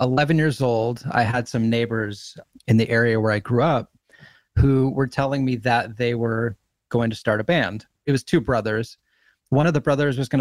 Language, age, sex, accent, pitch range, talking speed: English, 30-49, male, American, 110-135 Hz, 210 wpm